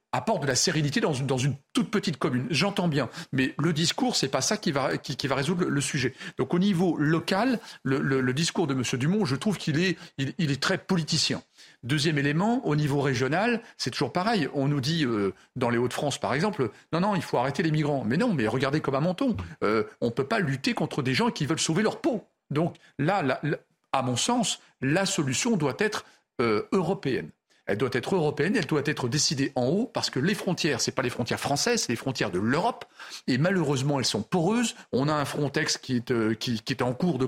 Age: 40-59